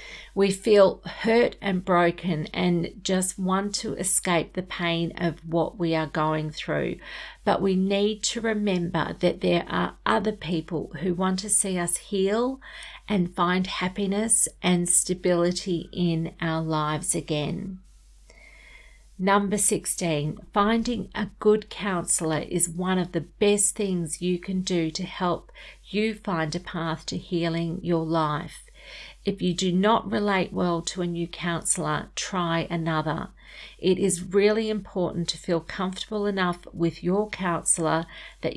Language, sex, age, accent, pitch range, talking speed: English, female, 40-59, Australian, 165-195 Hz, 145 wpm